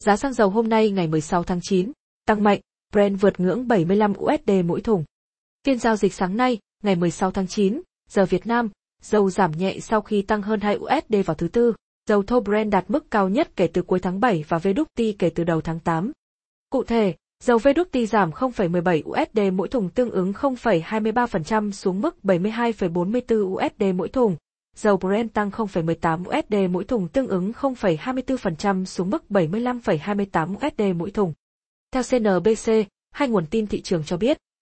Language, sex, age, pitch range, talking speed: Vietnamese, female, 20-39, 185-235 Hz, 180 wpm